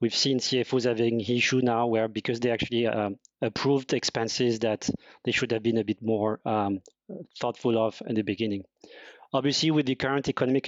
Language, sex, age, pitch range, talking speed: English, male, 30-49, 120-140 Hz, 180 wpm